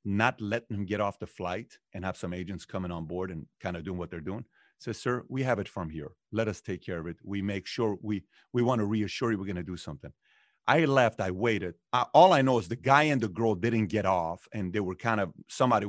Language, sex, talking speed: English, male, 265 wpm